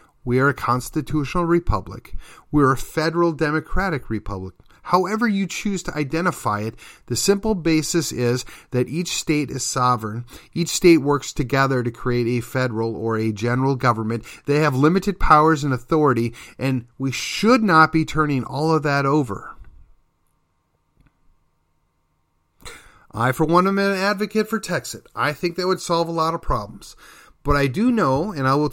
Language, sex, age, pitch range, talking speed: English, male, 40-59, 115-165 Hz, 160 wpm